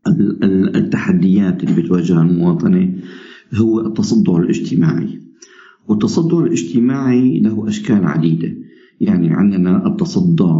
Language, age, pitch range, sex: Arabic, 50-69, 85-110 Hz, male